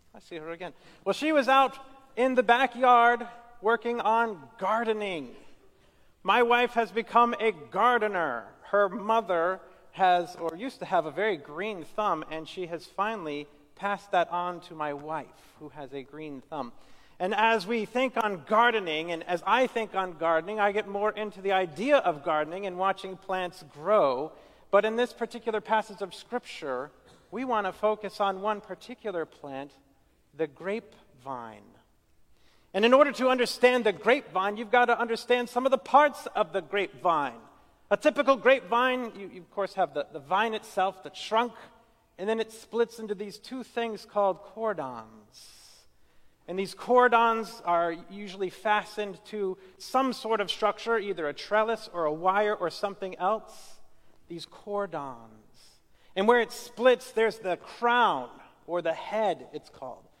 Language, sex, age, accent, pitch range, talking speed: English, male, 40-59, American, 175-230 Hz, 160 wpm